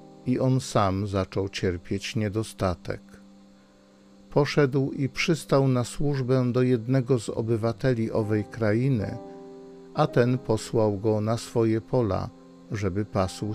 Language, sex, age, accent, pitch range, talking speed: Polish, male, 50-69, native, 100-125 Hz, 115 wpm